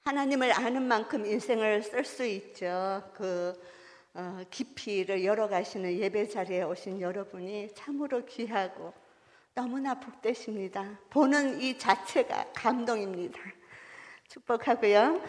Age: 50-69